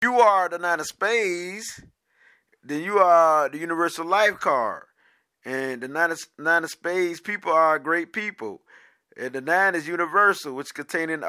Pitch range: 145-175 Hz